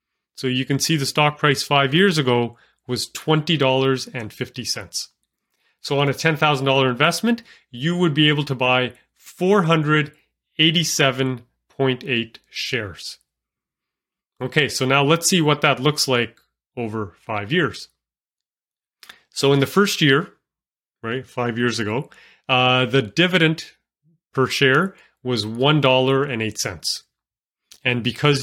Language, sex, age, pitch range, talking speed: English, male, 30-49, 120-150 Hz, 115 wpm